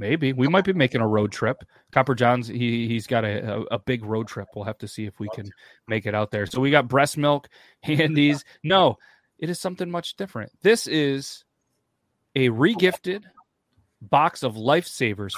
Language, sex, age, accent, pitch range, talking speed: English, male, 30-49, American, 115-155 Hz, 190 wpm